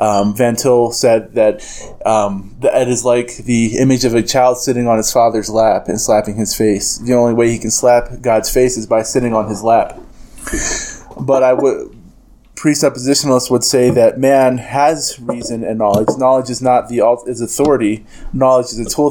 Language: English